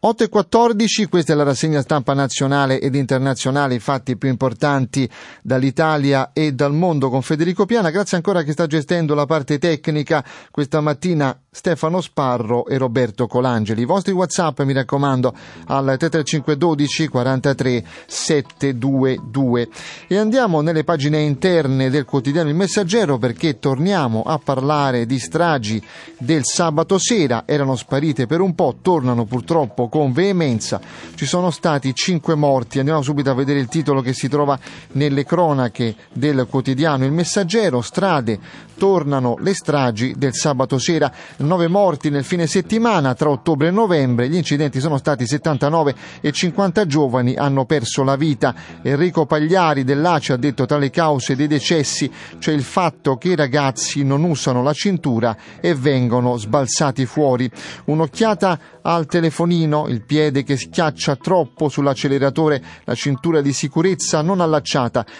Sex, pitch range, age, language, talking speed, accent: male, 135-165 Hz, 30-49, Italian, 145 wpm, native